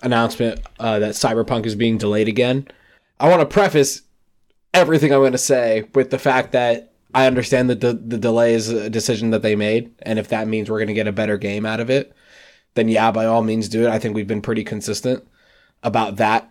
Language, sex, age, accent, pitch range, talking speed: English, male, 20-39, American, 105-130 Hz, 225 wpm